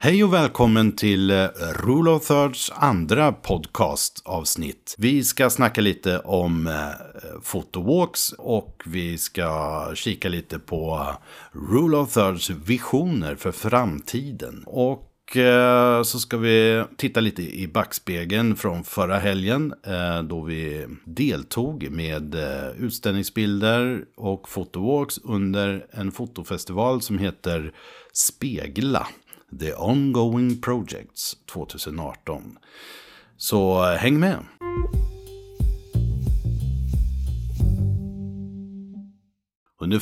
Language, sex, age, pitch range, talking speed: Swedish, male, 60-79, 90-120 Hz, 95 wpm